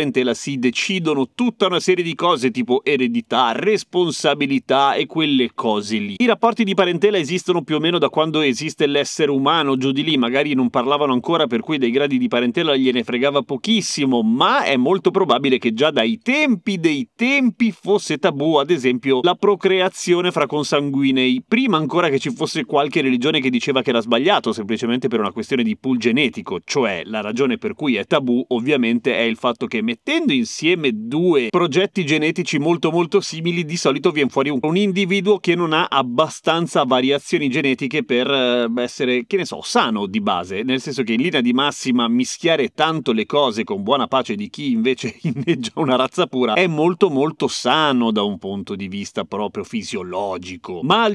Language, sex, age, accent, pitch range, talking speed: Italian, male, 30-49, native, 130-190 Hz, 180 wpm